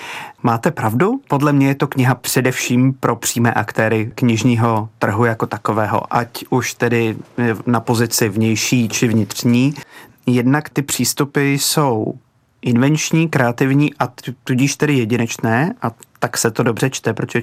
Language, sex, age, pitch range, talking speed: Czech, male, 30-49, 115-130 Hz, 140 wpm